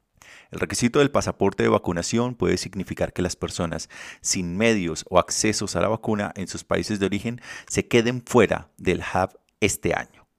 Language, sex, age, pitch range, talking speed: Spanish, male, 30-49, 90-105 Hz, 175 wpm